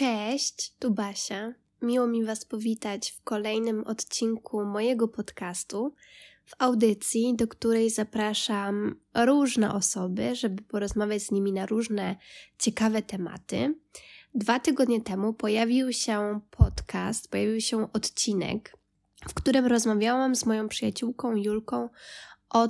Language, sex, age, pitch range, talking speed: Polish, female, 20-39, 205-240 Hz, 115 wpm